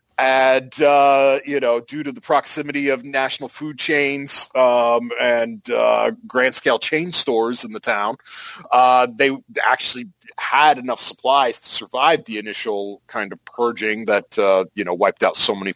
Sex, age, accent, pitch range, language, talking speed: male, 40-59, American, 120-170 Hz, English, 165 wpm